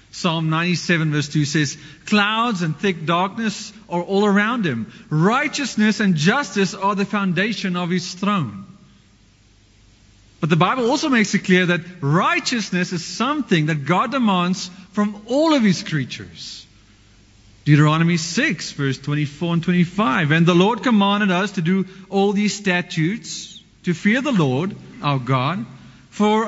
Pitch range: 145-215 Hz